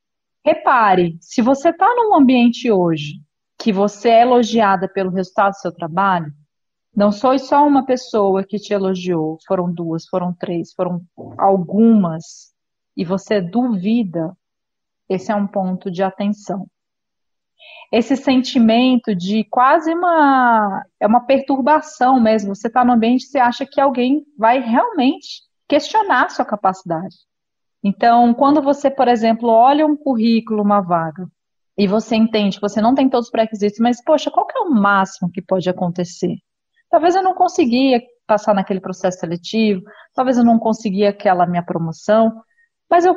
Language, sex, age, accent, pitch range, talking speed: Portuguese, female, 40-59, Brazilian, 190-265 Hz, 150 wpm